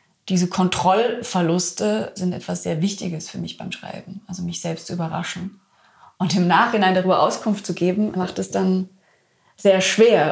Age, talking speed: 20-39, 155 wpm